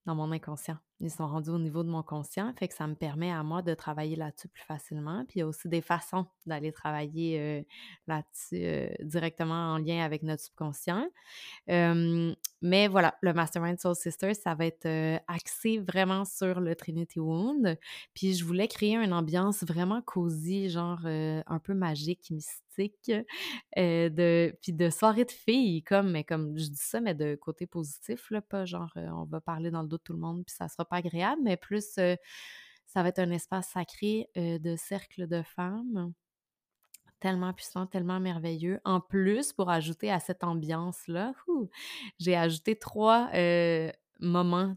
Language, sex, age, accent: French, female, 20-39, Canadian